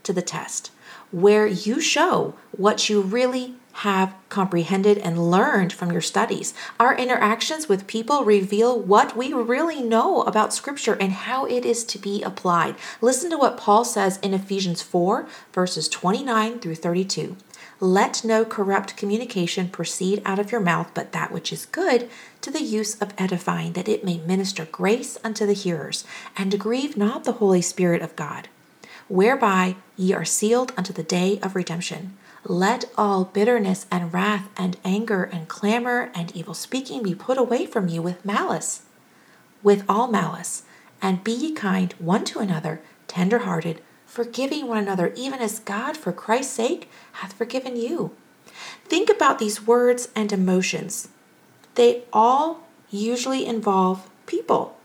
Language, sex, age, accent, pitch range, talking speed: English, female, 40-59, American, 185-235 Hz, 155 wpm